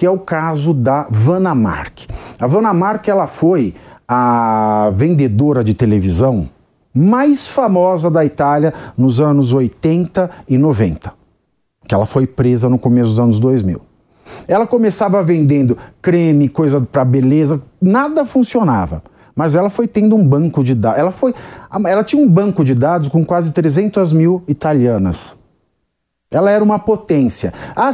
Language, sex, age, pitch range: English, male, 50-69, 125-185 Hz